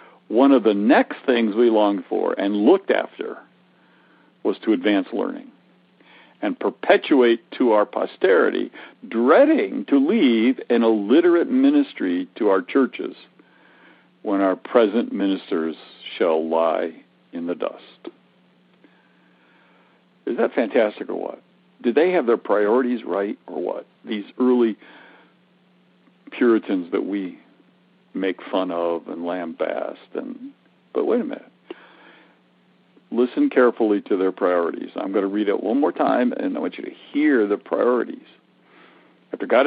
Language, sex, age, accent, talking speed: English, male, 60-79, American, 135 wpm